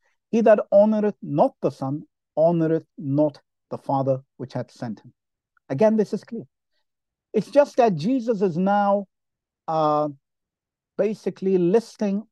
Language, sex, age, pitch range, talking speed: English, male, 50-69, 140-210 Hz, 130 wpm